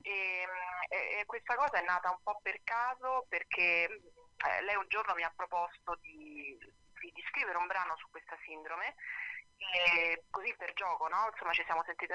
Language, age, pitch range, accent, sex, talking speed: Italian, 30-49, 165-190 Hz, native, female, 165 wpm